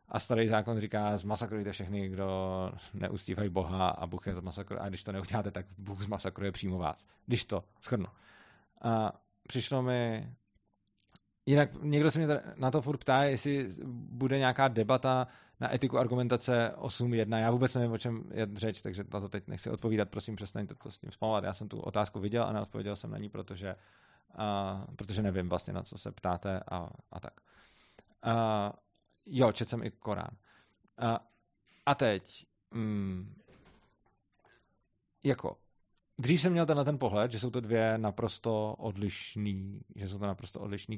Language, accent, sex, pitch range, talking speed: Czech, native, male, 100-120 Hz, 165 wpm